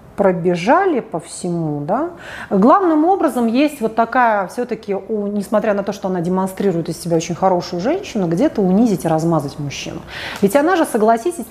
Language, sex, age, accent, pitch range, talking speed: Russian, female, 30-49, native, 170-235 Hz, 155 wpm